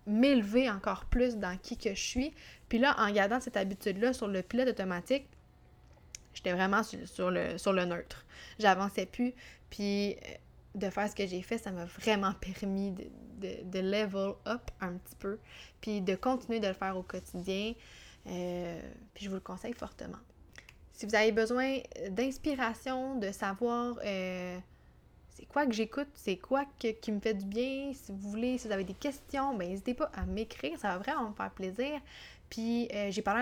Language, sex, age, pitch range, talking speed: French, female, 20-39, 195-235 Hz, 190 wpm